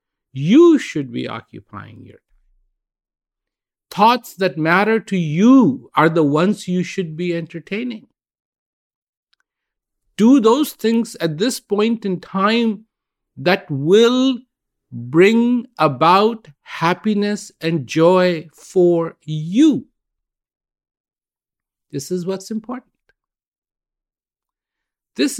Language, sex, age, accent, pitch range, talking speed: English, male, 50-69, Indian, 145-220 Hz, 90 wpm